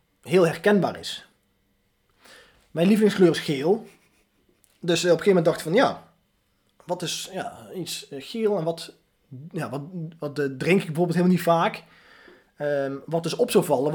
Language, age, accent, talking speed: Dutch, 20-39, Dutch, 145 wpm